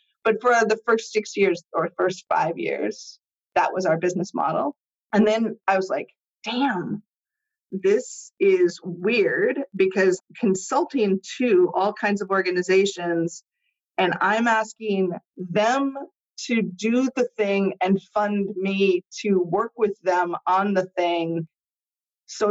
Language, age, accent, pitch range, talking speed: English, 30-49, American, 180-245 Hz, 135 wpm